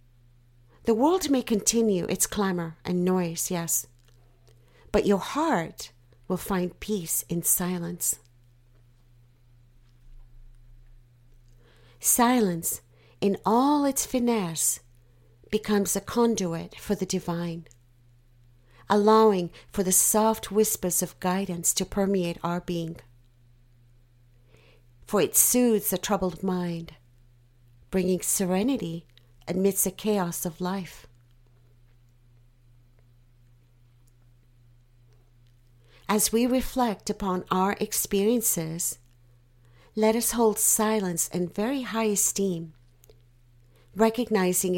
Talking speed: 90 wpm